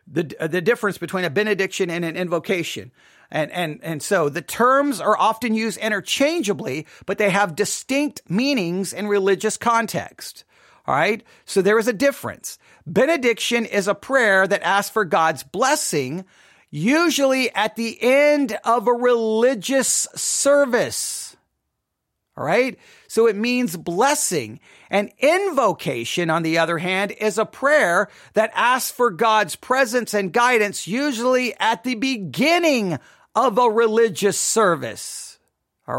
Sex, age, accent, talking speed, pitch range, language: male, 40-59, American, 135 wpm, 200-255 Hz, English